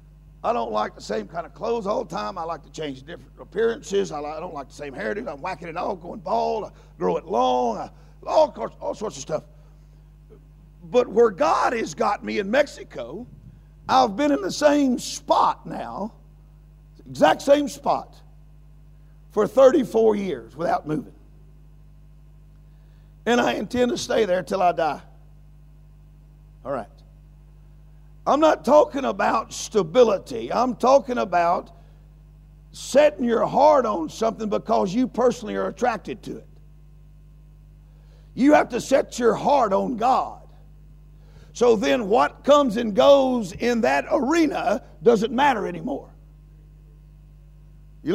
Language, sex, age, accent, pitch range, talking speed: English, male, 50-69, American, 150-245 Hz, 145 wpm